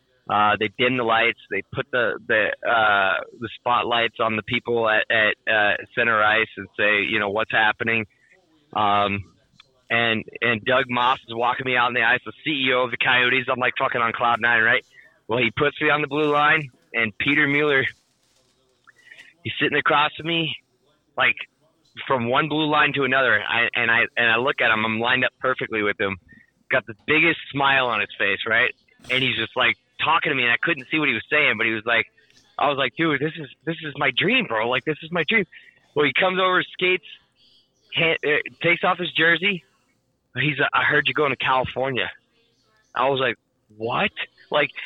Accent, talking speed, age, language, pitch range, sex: American, 205 wpm, 20-39, English, 120-150 Hz, male